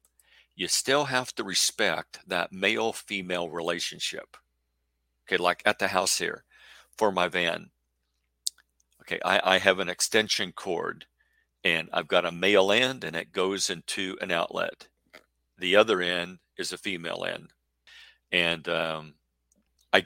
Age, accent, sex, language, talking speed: 50-69, American, male, English, 140 wpm